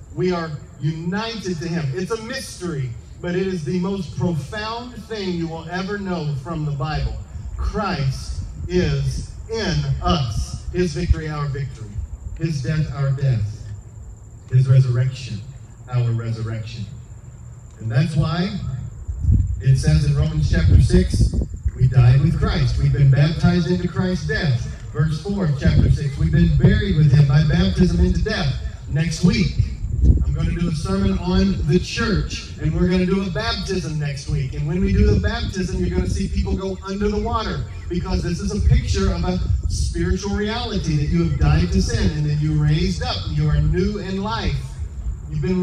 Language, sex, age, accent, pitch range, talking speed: English, male, 40-59, American, 110-175 Hz, 175 wpm